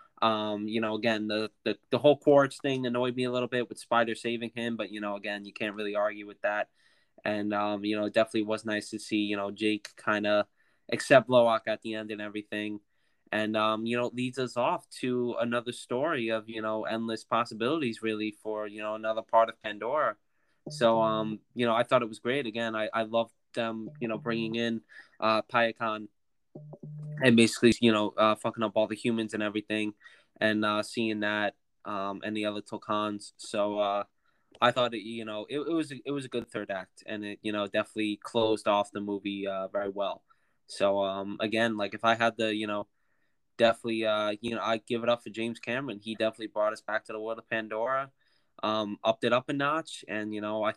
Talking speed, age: 220 wpm, 10-29